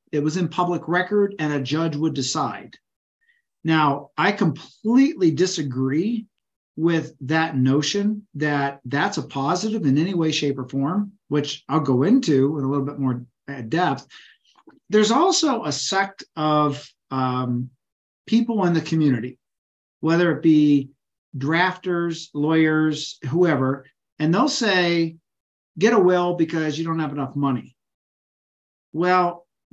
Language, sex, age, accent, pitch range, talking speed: English, male, 50-69, American, 140-180 Hz, 135 wpm